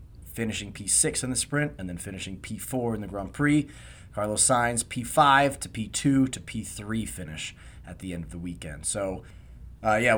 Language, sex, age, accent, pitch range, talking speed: English, male, 30-49, American, 95-140 Hz, 175 wpm